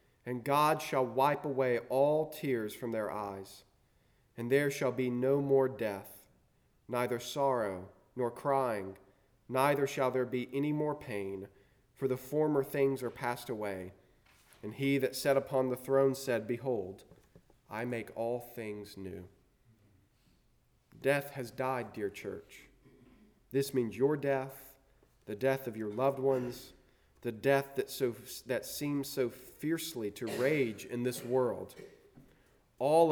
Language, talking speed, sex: English, 140 wpm, male